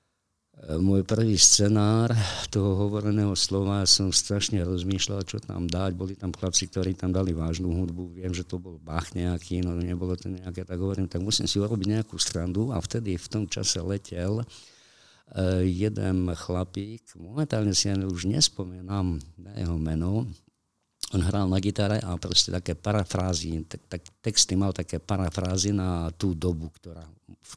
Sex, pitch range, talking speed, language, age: male, 85-100 Hz, 160 wpm, Slovak, 50-69